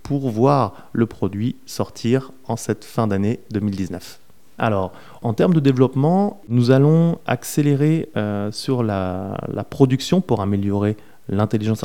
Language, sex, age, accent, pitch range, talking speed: French, male, 30-49, French, 105-130 Hz, 130 wpm